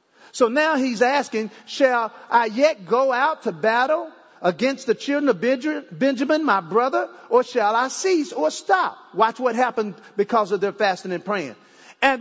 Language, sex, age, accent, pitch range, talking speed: English, male, 50-69, American, 210-285 Hz, 165 wpm